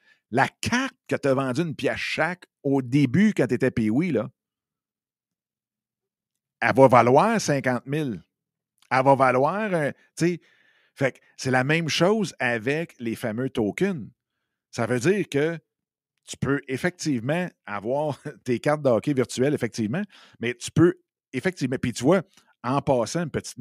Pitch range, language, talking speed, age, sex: 115-145 Hz, French, 155 wpm, 50-69, male